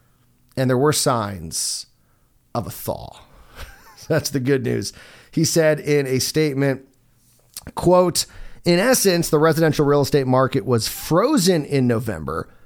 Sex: male